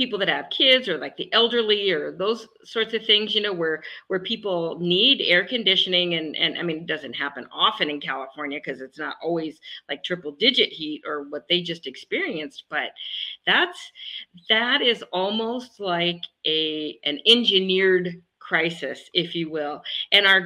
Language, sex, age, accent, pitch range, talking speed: English, female, 40-59, American, 165-205 Hz, 175 wpm